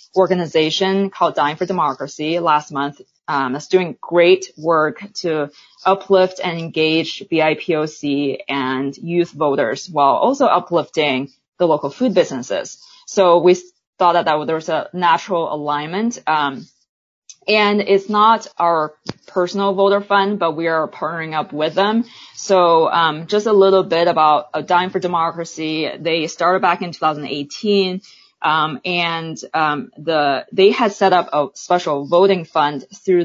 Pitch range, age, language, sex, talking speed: 155-190 Hz, 20-39, English, female, 150 wpm